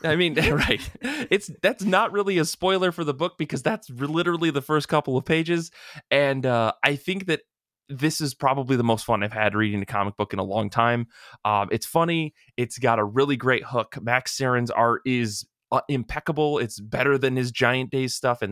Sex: male